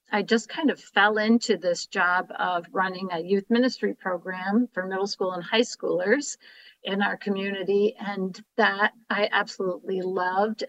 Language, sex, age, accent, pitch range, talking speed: English, female, 50-69, American, 185-230 Hz, 155 wpm